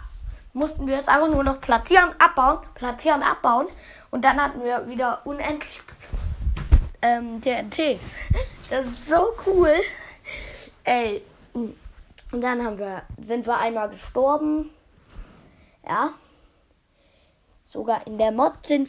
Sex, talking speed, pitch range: female, 120 wpm, 220-300 Hz